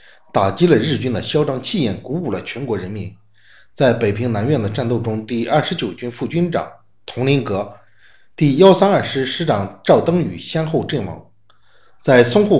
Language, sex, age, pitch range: Chinese, male, 50-69, 105-155 Hz